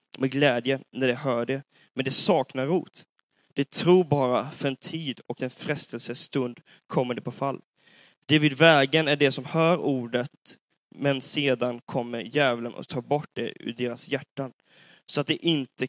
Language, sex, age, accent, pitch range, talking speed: Swedish, male, 20-39, native, 130-160 Hz, 175 wpm